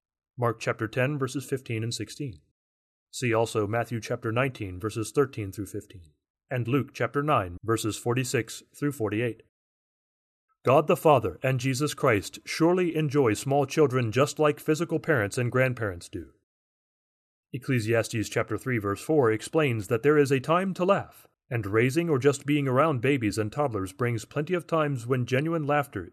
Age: 30-49